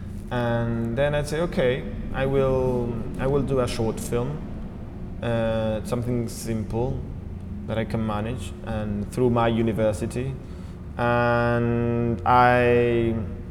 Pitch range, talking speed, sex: 95-125 Hz, 115 wpm, male